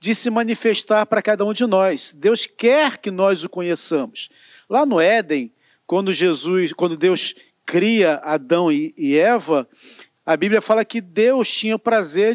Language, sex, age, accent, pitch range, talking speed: Portuguese, male, 40-59, Brazilian, 185-230 Hz, 155 wpm